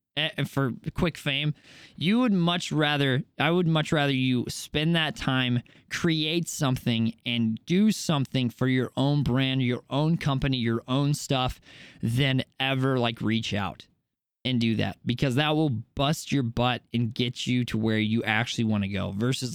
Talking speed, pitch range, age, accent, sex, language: 170 wpm, 120-155 Hz, 20-39, American, male, English